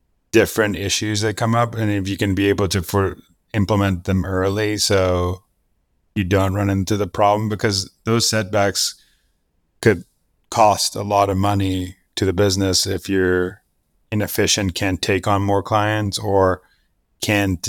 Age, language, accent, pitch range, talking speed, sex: 30-49, English, American, 90-100 Hz, 155 wpm, male